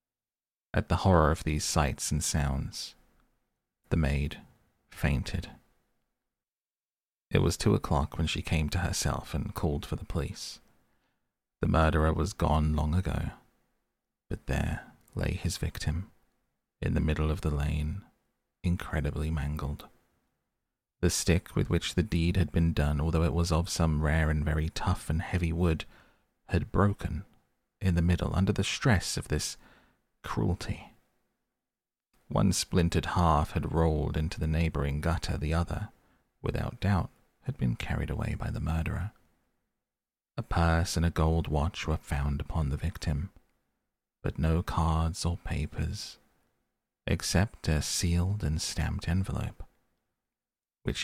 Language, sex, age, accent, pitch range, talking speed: English, male, 30-49, British, 75-90 Hz, 140 wpm